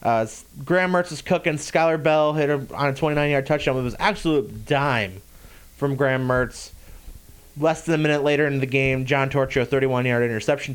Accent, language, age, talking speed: American, English, 20-39, 190 wpm